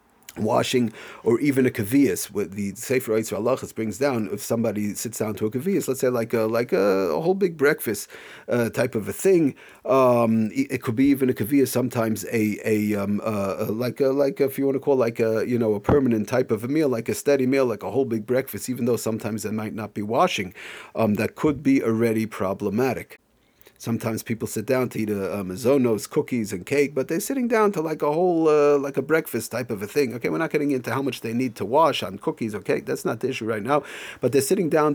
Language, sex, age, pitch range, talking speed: English, male, 40-59, 110-140 Hz, 245 wpm